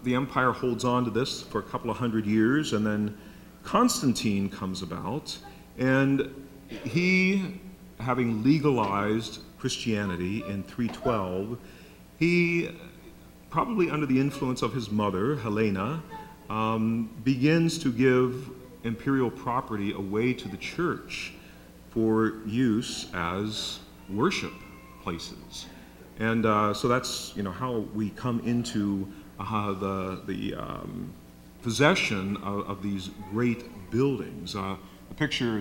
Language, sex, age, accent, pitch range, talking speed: English, male, 40-59, American, 100-130 Hz, 120 wpm